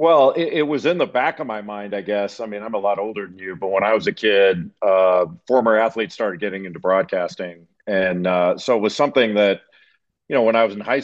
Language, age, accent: English, 50-69, American